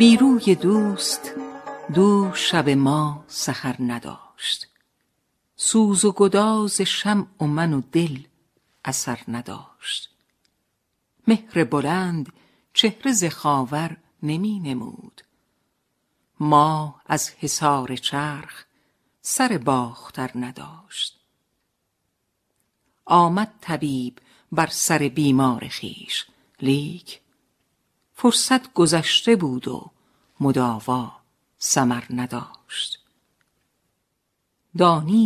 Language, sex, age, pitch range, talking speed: Persian, female, 50-69, 135-185 Hz, 75 wpm